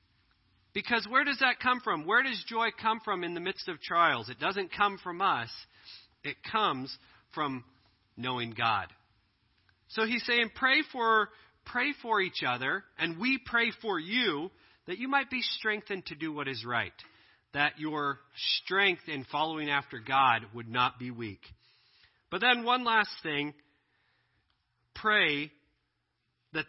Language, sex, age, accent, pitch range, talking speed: English, male, 40-59, American, 130-190 Hz, 155 wpm